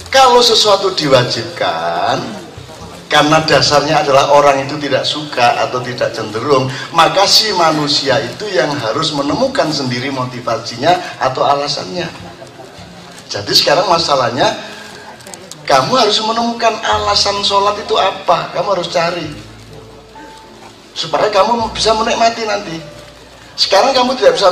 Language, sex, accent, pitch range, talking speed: Indonesian, male, native, 125-185 Hz, 115 wpm